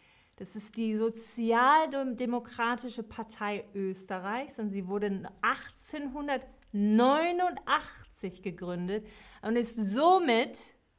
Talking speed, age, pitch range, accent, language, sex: 75 wpm, 40-59, 195-260 Hz, German, German, female